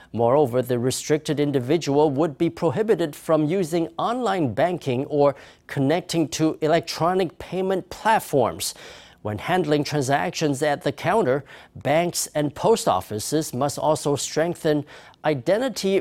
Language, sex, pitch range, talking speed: English, male, 145-180 Hz, 115 wpm